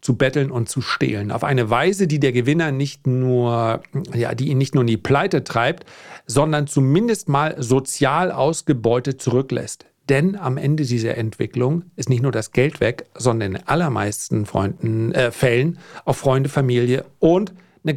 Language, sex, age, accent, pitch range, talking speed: German, male, 40-59, German, 125-165 Hz, 165 wpm